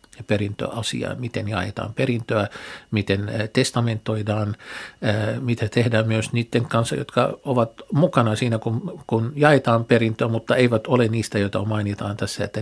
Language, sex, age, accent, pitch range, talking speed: Finnish, male, 60-79, native, 110-125 Hz, 130 wpm